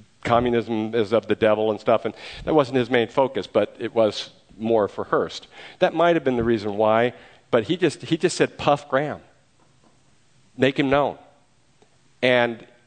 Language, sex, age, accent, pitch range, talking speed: English, male, 50-69, American, 120-155 Hz, 175 wpm